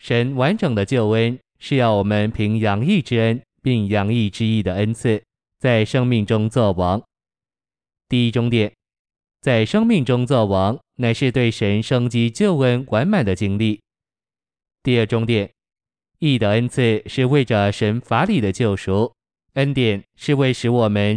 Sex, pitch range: male, 105-125 Hz